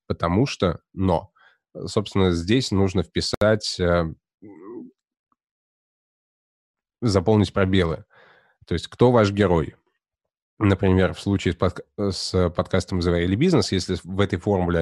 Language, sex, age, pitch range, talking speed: Russian, male, 20-39, 90-105 Hz, 115 wpm